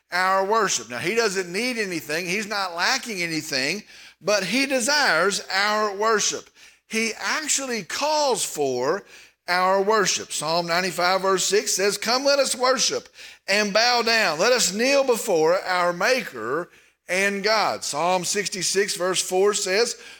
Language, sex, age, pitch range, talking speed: English, male, 50-69, 185-245 Hz, 140 wpm